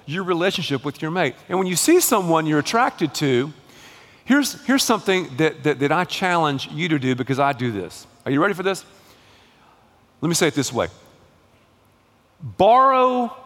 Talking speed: 180 wpm